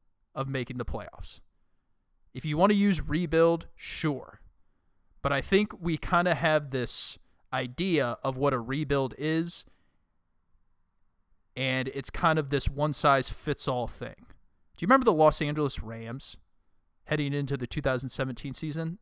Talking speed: 140 wpm